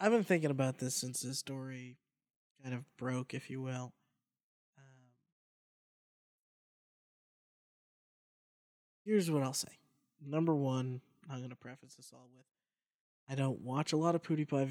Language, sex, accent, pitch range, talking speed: English, male, American, 130-165 Hz, 145 wpm